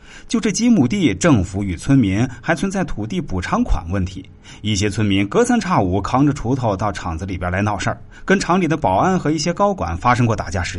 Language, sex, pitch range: Chinese, male, 95-145 Hz